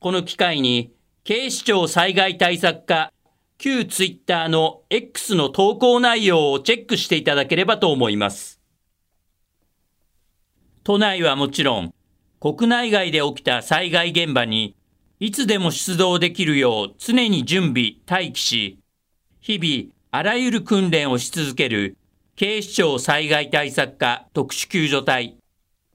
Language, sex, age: Japanese, male, 50-69